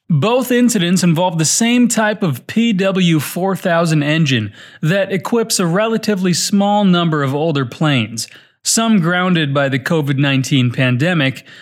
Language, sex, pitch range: Portuguese, male, 145-190 Hz